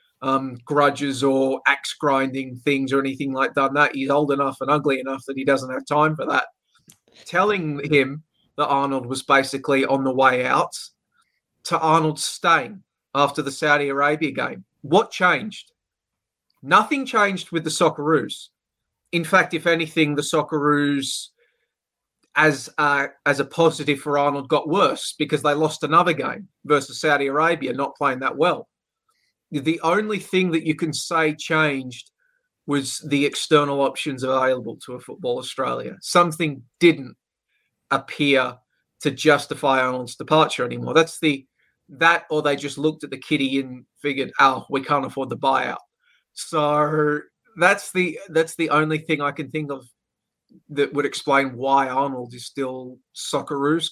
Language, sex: English, male